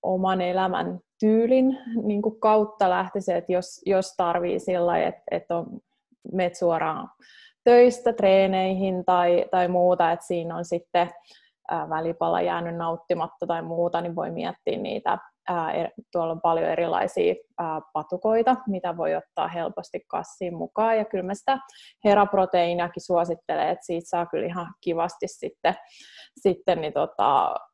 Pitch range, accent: 170-200 Hz, native